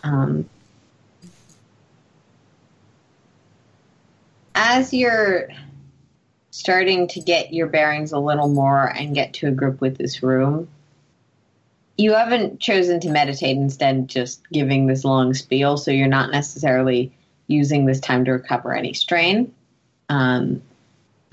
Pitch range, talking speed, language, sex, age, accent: 135-170 Hz, 120 wpm, English, female, 30-49, American